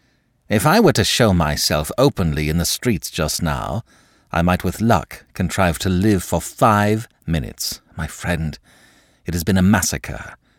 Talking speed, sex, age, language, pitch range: 165 wpm, male, 60-79, English, 75-105 Hz